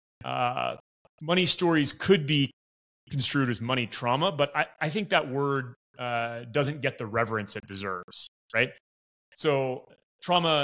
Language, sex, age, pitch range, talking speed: English, male, 30-49, 115-145 Hz, 135 wpm